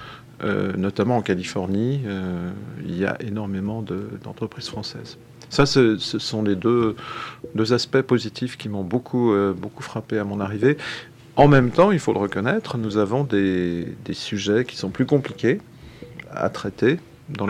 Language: French